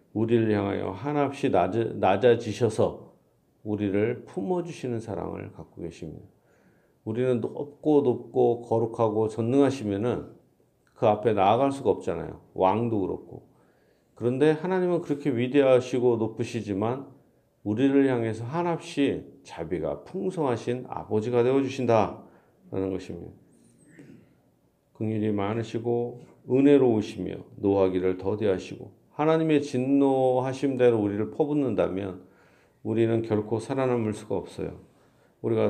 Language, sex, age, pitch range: Korean, male, 40-59, 105-130 Hz